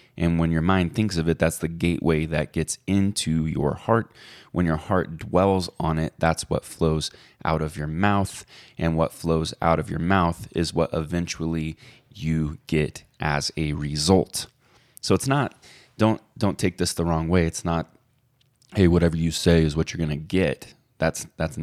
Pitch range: 80-90 Hz